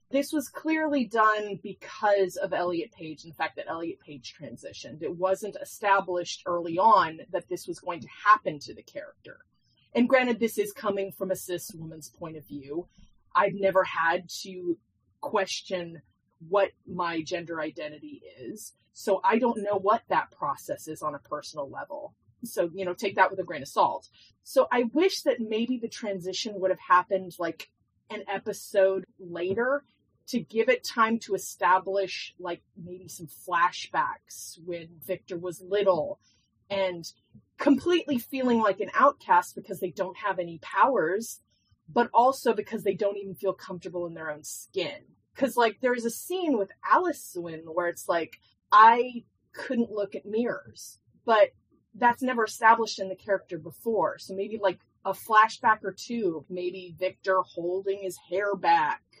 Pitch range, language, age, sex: 180-235 Hz, English, 30-49, female